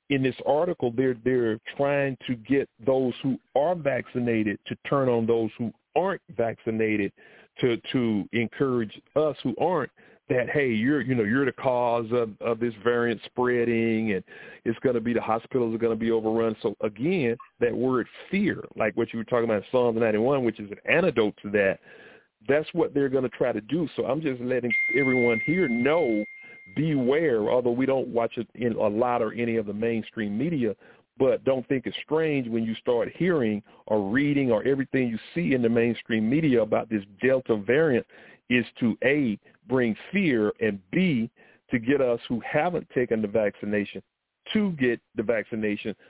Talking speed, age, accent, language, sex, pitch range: 180 wpm, 40-59, American, English, male, 115-130 Hz